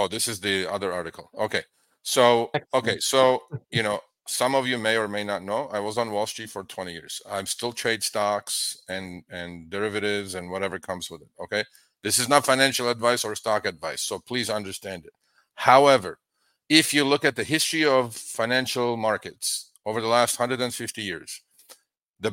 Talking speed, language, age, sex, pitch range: 185 wpm, English, 50-69, male, 105-130 Hz